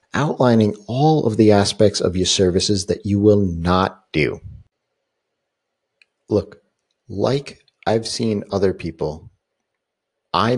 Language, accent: English, American